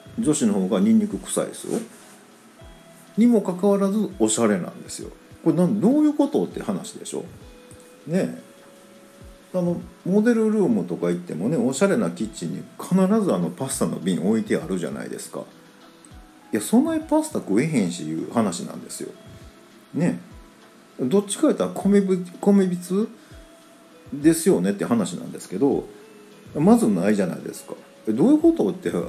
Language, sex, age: Japanese, male, 50-69